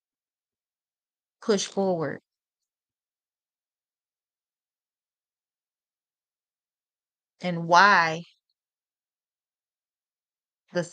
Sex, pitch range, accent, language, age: female, 170-200 Hz, American, English, 20-39